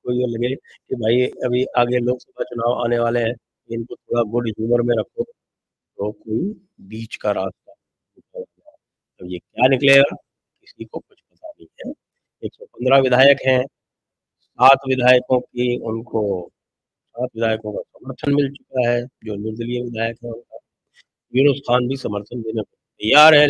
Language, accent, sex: English, Indian, male